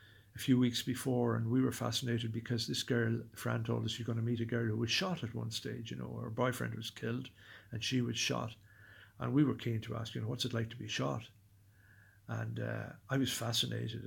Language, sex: English, male